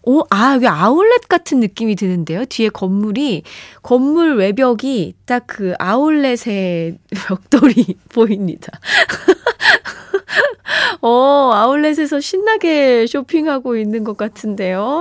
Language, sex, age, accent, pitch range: Korean, female, 20-39, native, 195-275 Hz